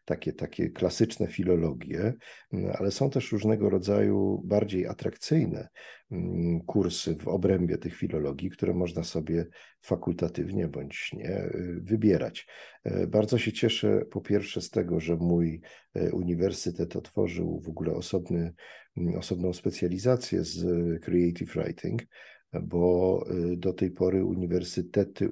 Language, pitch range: Polish, 85-100 Hz